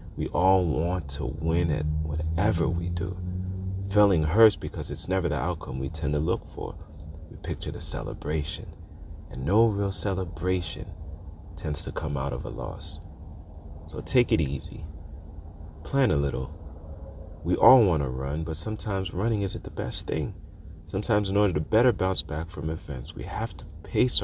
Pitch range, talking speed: 75-95 Hz, 170 wpm